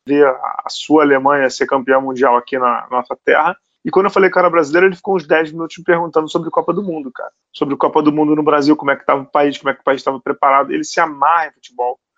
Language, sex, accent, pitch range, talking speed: Portuguese, male, Brazilian, 135-190 Hz, 270 wpm